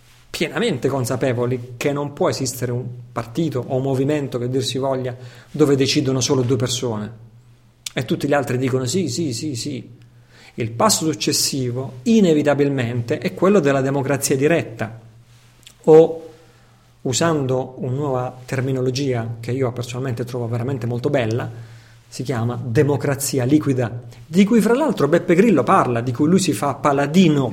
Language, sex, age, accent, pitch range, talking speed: Italian, male, 40-59, native, 125-155 Hz, 145 wpm